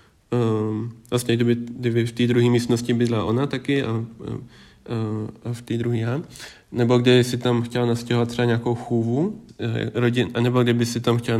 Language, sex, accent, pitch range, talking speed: Czech, male, native, 115-125 Hz, 175 wpm